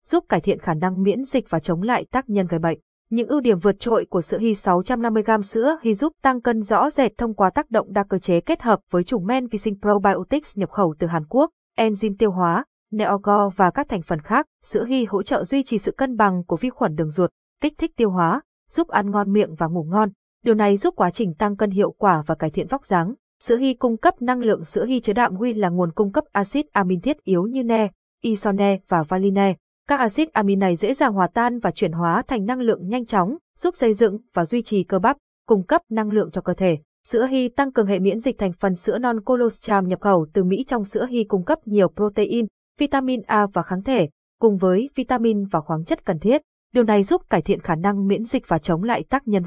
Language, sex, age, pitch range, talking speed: Vietnamese, female, 20-39, 190-250 Hz, 245 wpm